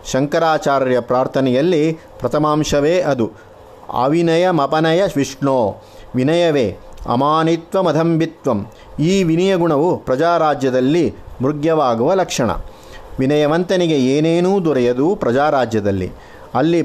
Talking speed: 70 wpm